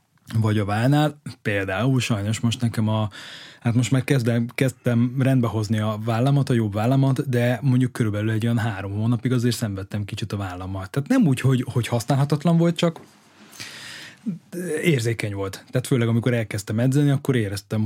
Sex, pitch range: male, 105-125 Hz